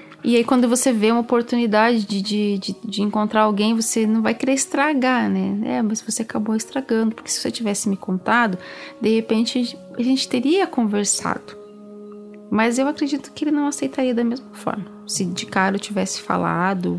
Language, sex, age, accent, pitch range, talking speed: Portuguese, female, 30-49, Brazilian, 180-235 Hz, 180 wpm